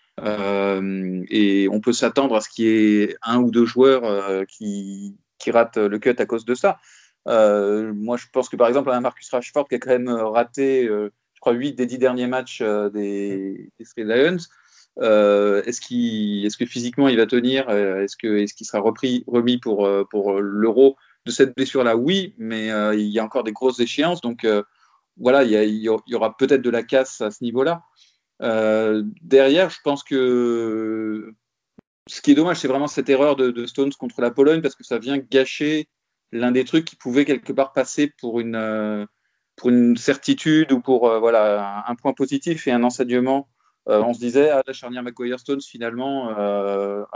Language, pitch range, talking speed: French, 105-135 Hz, 205 wpm